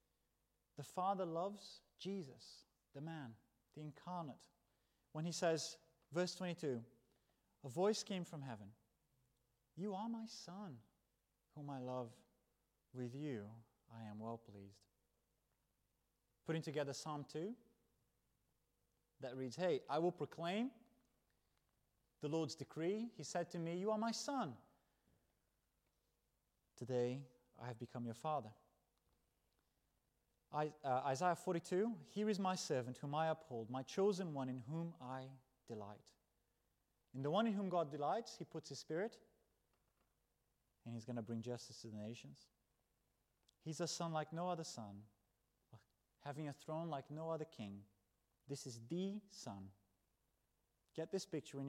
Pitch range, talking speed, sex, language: 120-170 Hz, 135 wpm, male, English